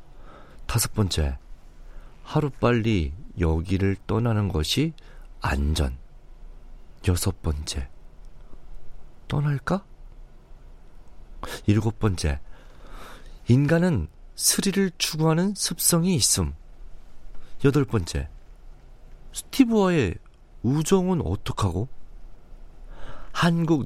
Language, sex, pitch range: Korean, male, 80-125 Hz